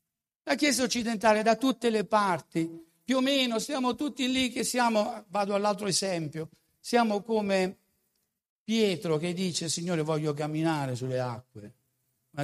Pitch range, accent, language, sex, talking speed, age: 130-195 Hz, native, Italian, male, 140 wpm, 60-79